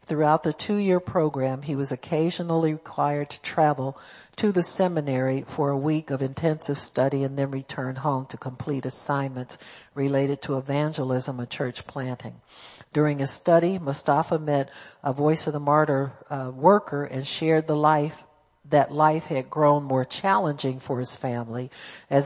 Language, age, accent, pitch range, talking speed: English, 60-79, American, 135-160 Hz, 155 wpm